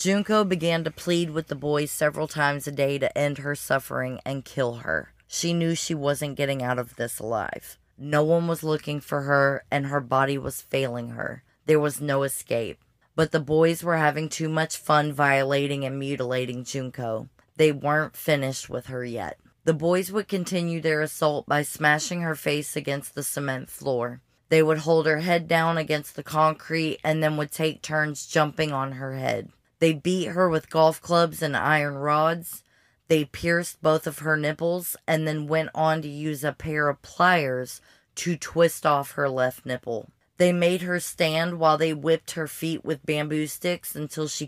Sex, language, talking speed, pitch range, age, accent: female, English, 185 wpm, 140-165 Hz, 20-39, American